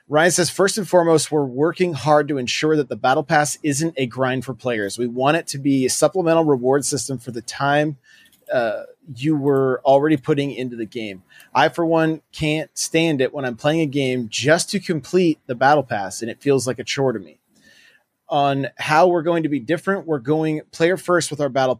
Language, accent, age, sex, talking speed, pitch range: English, American, 30-49, male, 215 wpm, 125-155 Hz